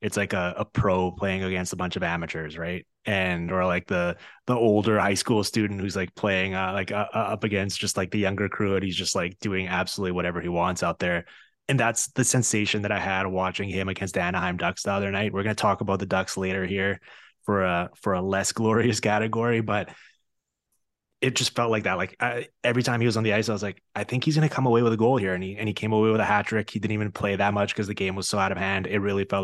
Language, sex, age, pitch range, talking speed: English, male, 20-39, 95-110 Hz, 270 wpm